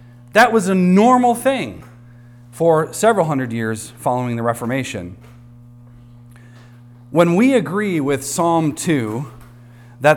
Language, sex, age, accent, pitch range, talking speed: English, male, 40-59, American, 120-155 Hz, 110 wpm